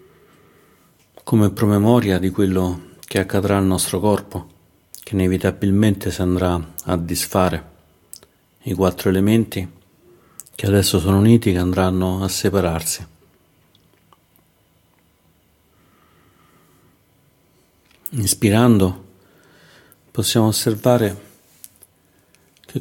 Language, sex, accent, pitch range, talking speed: Italian, male, native, 90-105 Hz, 80 wpm